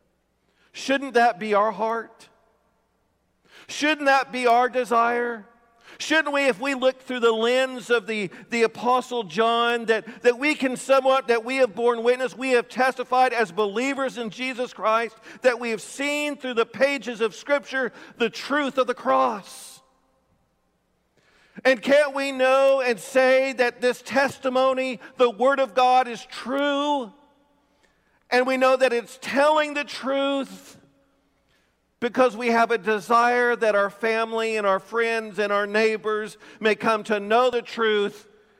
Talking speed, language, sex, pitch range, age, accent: 150 wpm, English, male, 225-265 Hz, 50-69, American